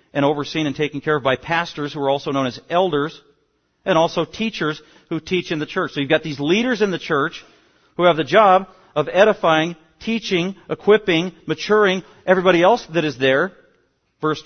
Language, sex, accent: English, male, American